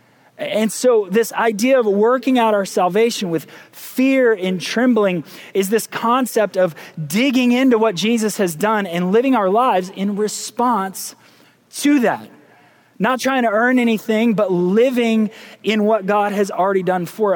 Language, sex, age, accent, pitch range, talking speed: English, male, 30-49, American, 185-230 Hz, 155 wpm